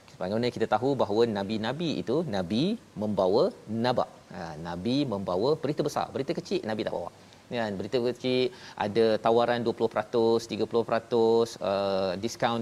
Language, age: Malayalam, 40-59